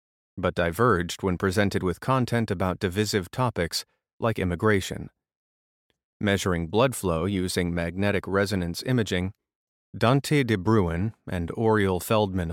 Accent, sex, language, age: American, male, English, 30-49